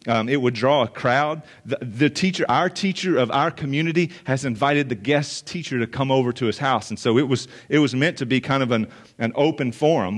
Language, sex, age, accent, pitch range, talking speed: English, male, 40-59, American, 120-145 Hz, 235 wpm